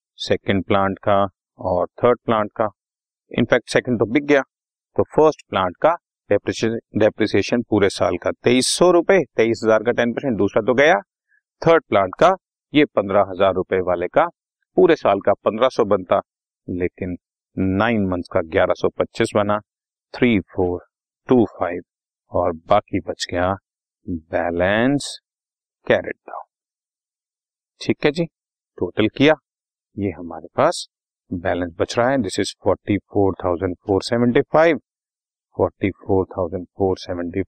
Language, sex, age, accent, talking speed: Hindi, male, 40-59, native, 140 wpm